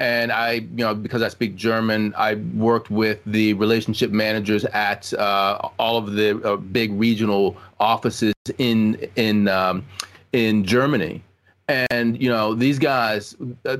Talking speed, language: 150 wpm, English